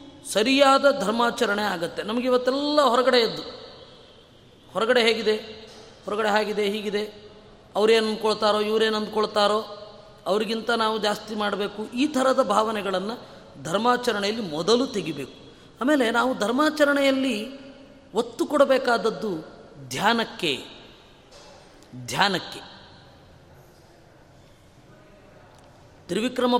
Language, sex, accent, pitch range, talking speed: Kannada, female, native, 210-265 Hz, 75 wpm